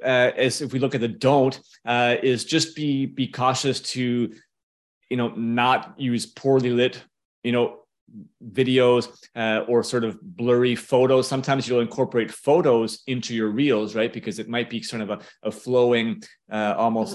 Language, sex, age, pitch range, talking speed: English, male, 30-49, 110-130 Hz, 170 wpm